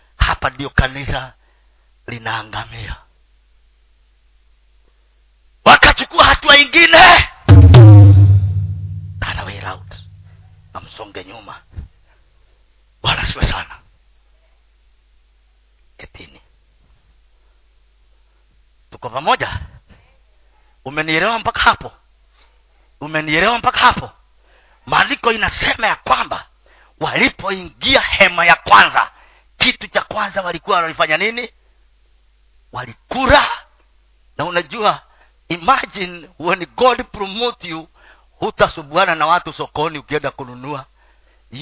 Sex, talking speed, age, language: male, 75 wpm, 40-59, Swahili